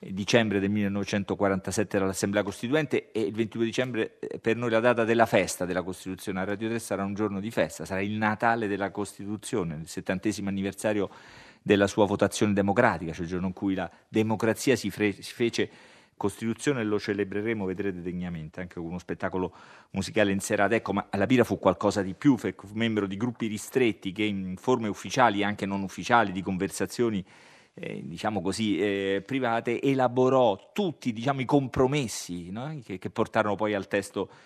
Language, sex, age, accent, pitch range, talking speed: Italian, male, 30-49, native, 95-115 Hz, 175 wpm